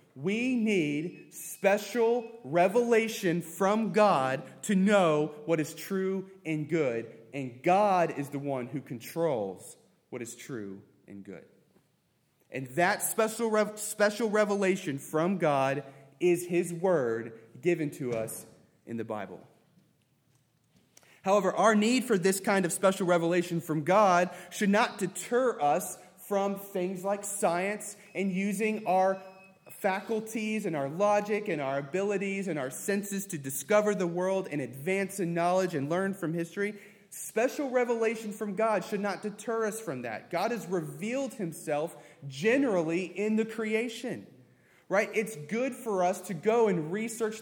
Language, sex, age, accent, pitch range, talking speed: English, male, 20-39, American, 160-210 Hz, 140 wpm